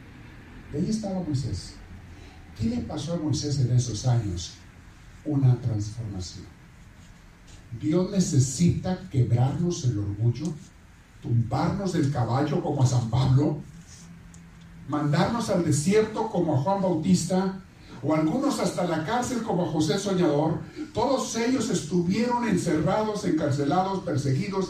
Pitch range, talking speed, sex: 115-175 Hz, 115 wpm, male